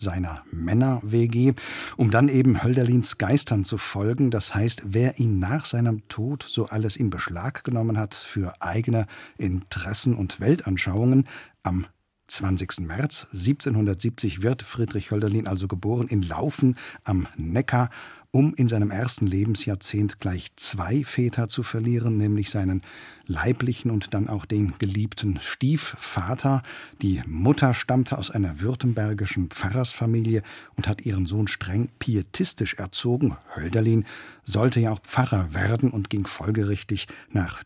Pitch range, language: 100-125 Hz, German